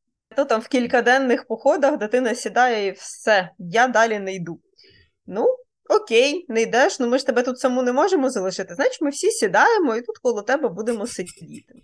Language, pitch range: Ukrainian, 235-305 Hz